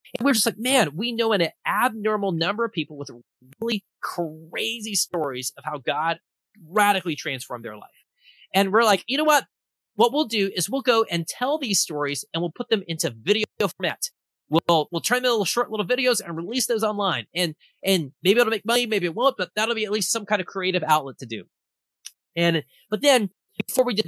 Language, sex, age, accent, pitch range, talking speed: English, male, 30-49, American, 165-230 Hz, 210 wpm